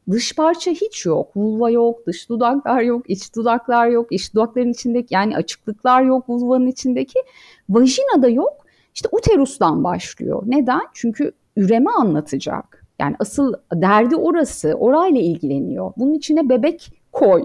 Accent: native